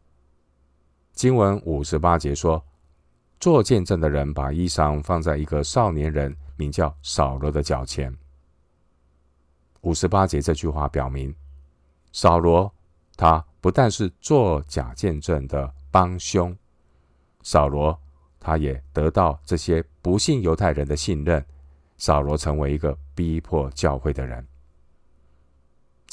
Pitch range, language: 70-85 Hz, Chinese